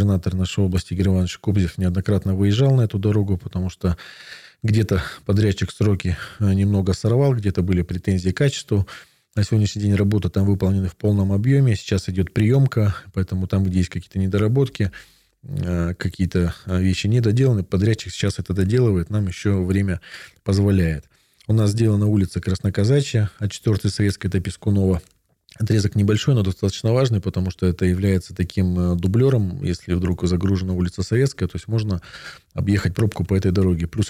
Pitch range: 95-105 Hz